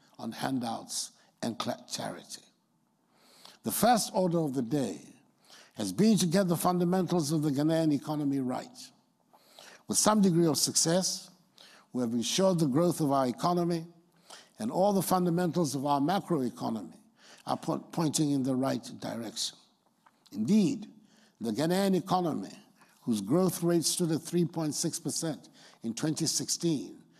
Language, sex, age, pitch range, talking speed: English, male, 60-79, 140-180 Hz, 130 wpm